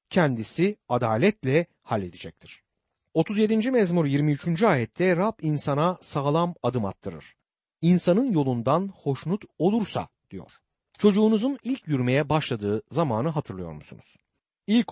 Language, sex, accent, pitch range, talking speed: Turkish, male, native, 120-185 Hz, 100 wpm